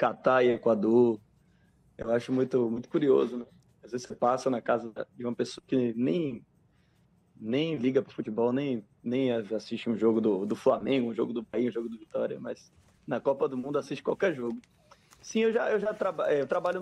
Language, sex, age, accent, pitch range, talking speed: Portuguese, male, 20-39, Brazilian, 115-140 Hz, 205 wpm